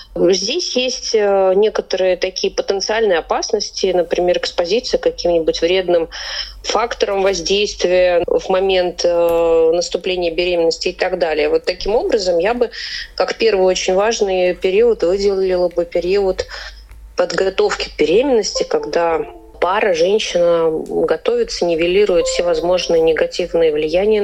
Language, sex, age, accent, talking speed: Russian, female, 30-49, native, 110 wpm